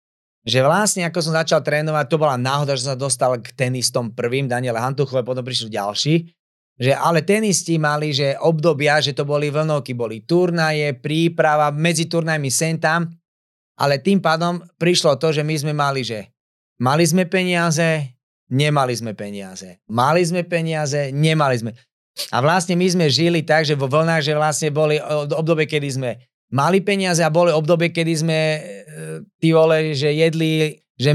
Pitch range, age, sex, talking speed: 135-165 Hz, 30-49, male, 165 wpm